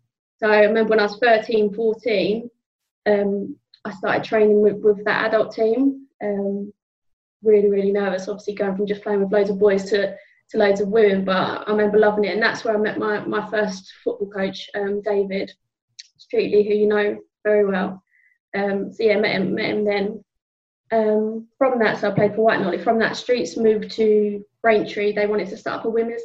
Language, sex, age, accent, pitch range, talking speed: English, female, 20-39, British, 205-220 Hz, 205 wpm